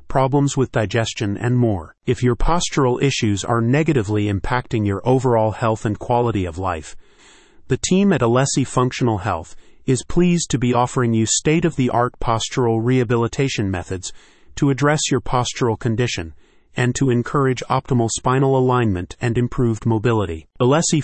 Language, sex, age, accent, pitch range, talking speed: English, male, 30-49, American, 110-135 Hz, 145 wpm